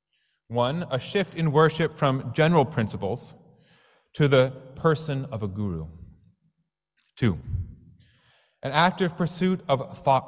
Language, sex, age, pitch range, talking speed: English, male, 30-49, 105-145 Hz, 115 wpm